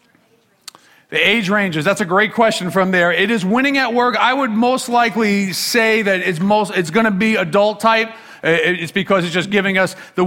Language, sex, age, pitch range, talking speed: English, male, 40-59, 175-210 Hz, 205 wpm